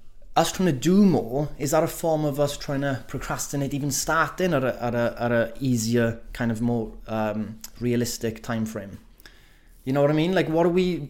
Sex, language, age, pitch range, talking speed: male, English, 20-39, 115-145 Hz, 210 wpm